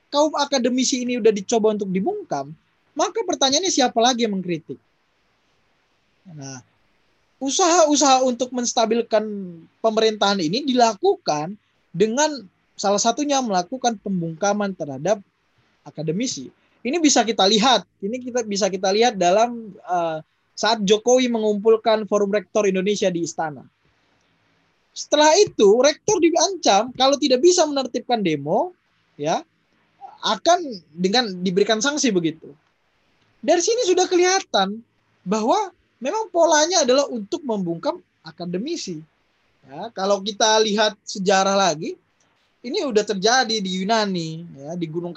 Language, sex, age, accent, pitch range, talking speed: Indonesian, male, 20-39, native, 180-270 Hz, 115 wpm